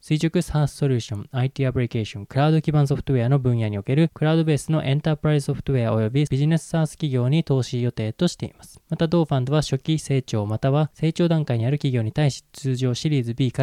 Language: Japanese